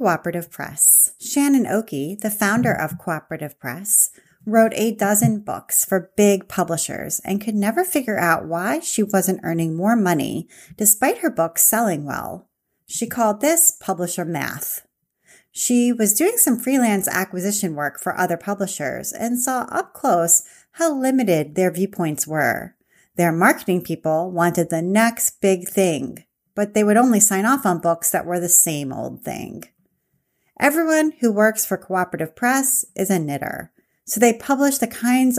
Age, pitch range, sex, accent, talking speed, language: 30-49, 170-230 Hz, female, American, 155 wpm, English